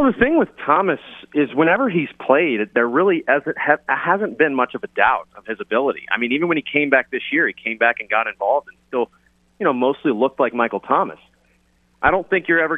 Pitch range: 110-130 Hz